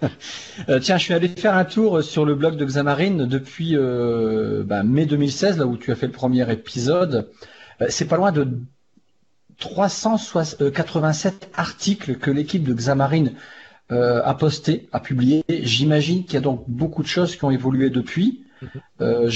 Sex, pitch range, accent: male, 125-160 Hz, French